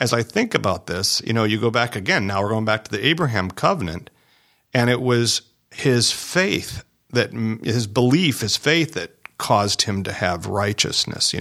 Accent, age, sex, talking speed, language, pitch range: American, 40-59, male, 190 wpm, English, 100-120 Hz